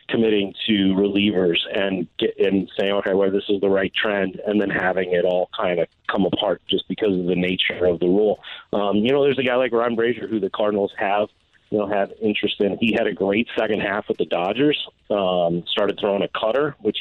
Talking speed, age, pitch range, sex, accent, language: 225 wpm, 40-59, 100-130 Hz, male, American, English